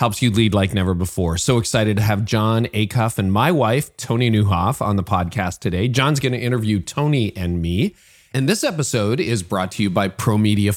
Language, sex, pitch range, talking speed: English, male, 95-125 Hz, 200 wpm